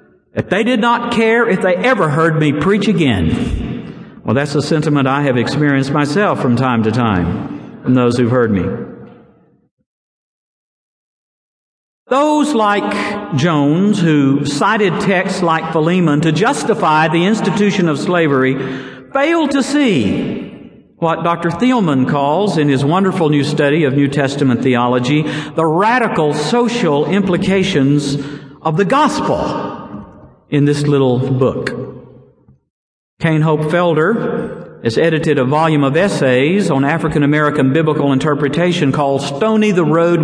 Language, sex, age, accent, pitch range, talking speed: English, male, 50-69, American, 145-220 Hz, 130 wpm